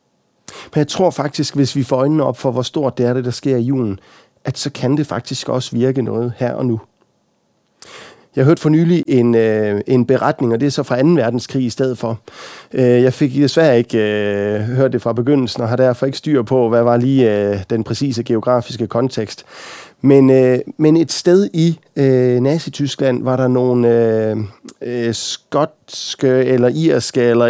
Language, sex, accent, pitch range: Danish, male, native, 125-150 Hz